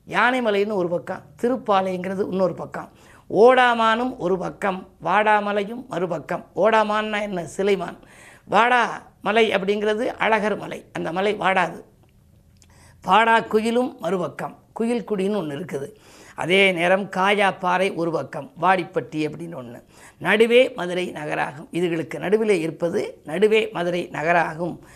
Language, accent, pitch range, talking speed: Tamil, native, 165-210 Hz, 110 wpm